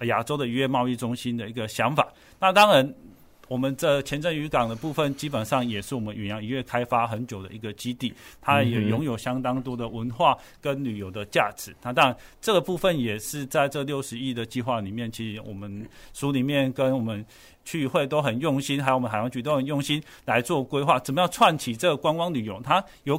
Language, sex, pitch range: Chinese, male, 120-150 Hz